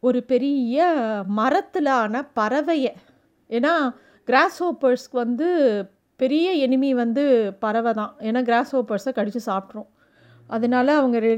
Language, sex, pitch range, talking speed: Tamil, female, 225-275 Hz, 100 wpm